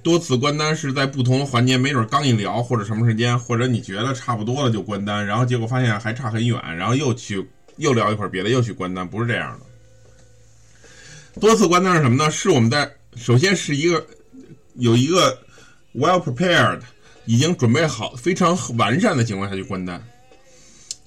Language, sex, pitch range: Chinese, male, 110-135 Hz